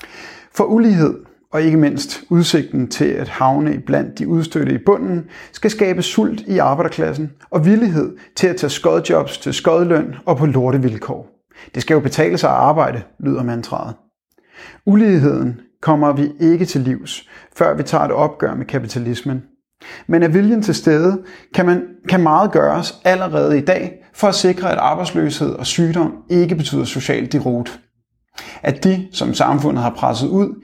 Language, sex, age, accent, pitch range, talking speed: Danish, male, 30-49, native, 140-180 Hz, 165 wpm